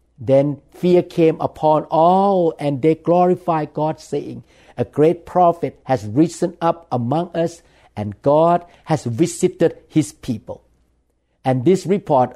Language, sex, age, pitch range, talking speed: English, male, 60-79, 125-170 Hz, 130 wpm